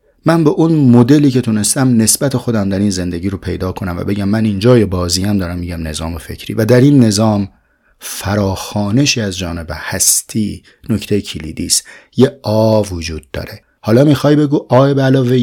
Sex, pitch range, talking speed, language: male, 95-115 Hz, 180 wpm, Persian